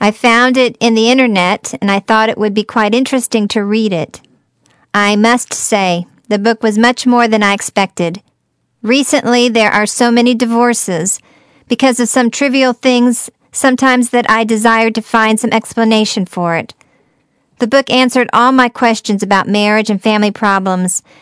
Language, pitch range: English, 210-245 Hz